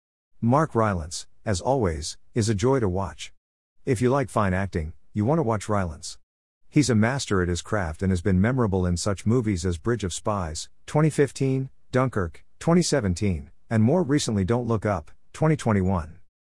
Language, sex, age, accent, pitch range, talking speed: English, male, 50-69, American, 90-115 Hz, 170 wpm